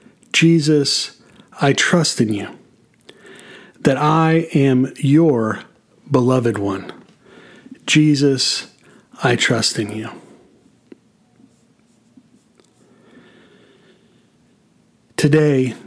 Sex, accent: male, American